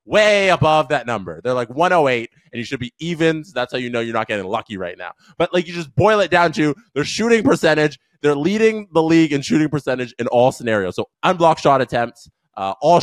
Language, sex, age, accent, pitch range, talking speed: English, male, 20-39, American, 120-170 Hz, 230 wpm